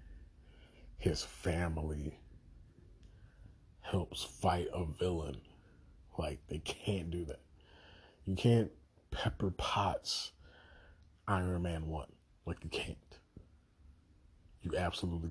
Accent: American